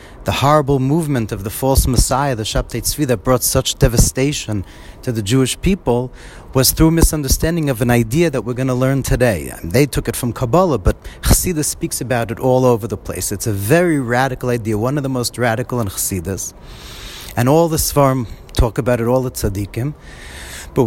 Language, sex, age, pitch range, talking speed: English, male, 30-49, 105-140 Hz, 190 wpm